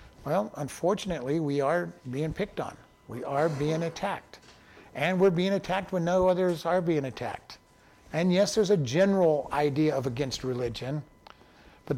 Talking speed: 155 wpm